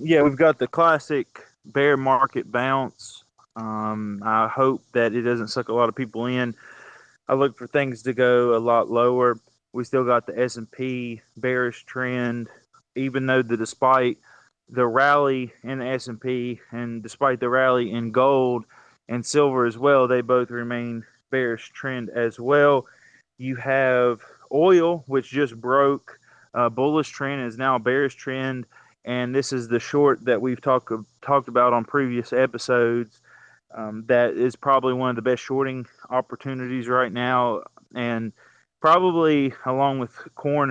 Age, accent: 20-39, American